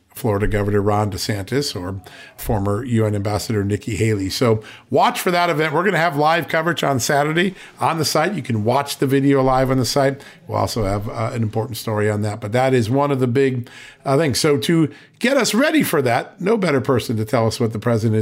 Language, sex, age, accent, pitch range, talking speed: English, male, 50-69, American, 115-165 Hz, 225 wpm